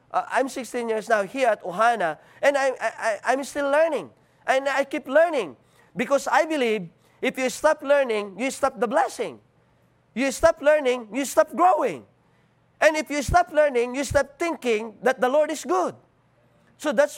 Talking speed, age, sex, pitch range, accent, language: 170 wpm, 40-59, male, 220-295 Hz, Filipino, English